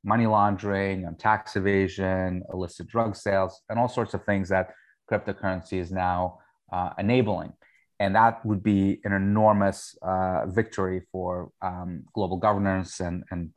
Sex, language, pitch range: male, English, 90-105 Hz